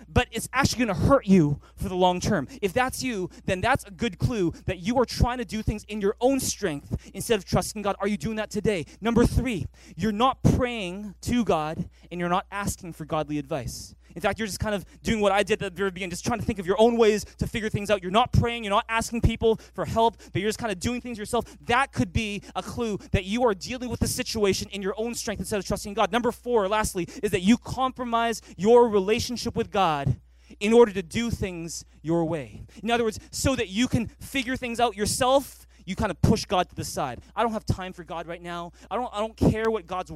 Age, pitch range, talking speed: 20-39, 180-230 Hz, 250 wpm